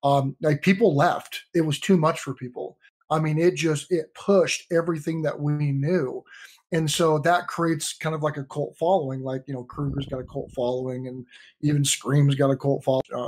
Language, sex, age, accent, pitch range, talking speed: English, male, 30-49, American, 145-180 Hz, 205 wpm